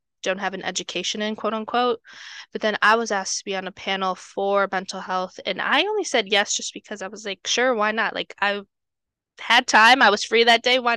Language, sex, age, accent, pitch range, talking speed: English, female, 10-29, American, 185-225 Hz, 230 wpm